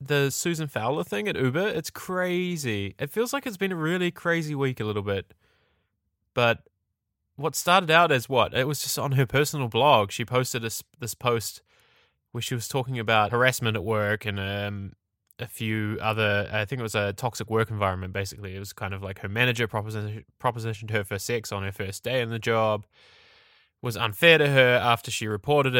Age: 10-29